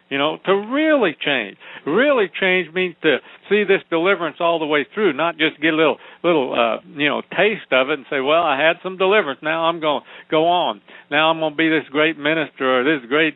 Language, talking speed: English, 235 wpm